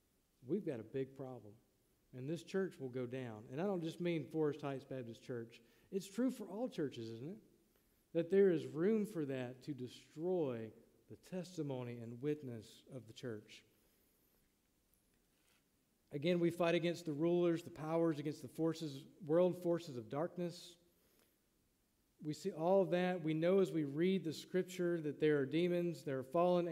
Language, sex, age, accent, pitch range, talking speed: English, male, 50-69, American, 135-180 Hz, 170 wpm